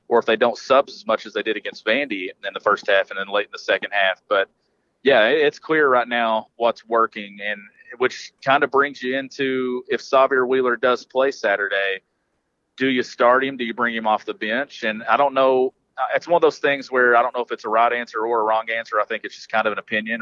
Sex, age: male, 30-49